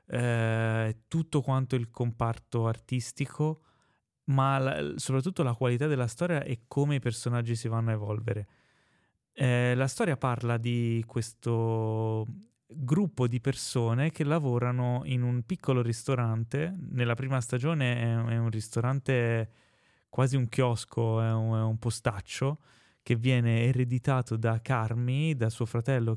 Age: 20-39